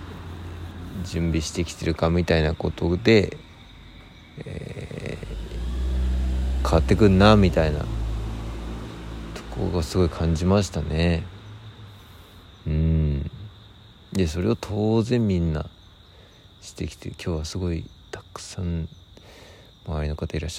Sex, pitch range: male, 80-95 Hz